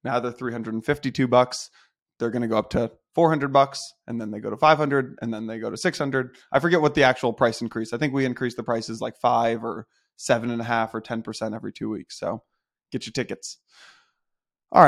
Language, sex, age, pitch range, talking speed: English, male, 20-39, 115-145 Hz, 245 wpm